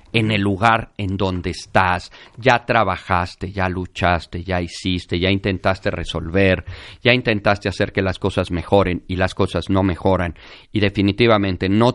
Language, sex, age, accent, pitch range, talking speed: Spanish, male, 40-59, Mexican, 95-155 Hz, 150 wpm